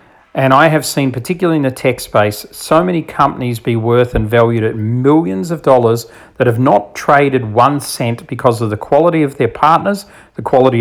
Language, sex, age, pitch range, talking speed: English, male, 40-59, 115-150 Hz, 195 wpm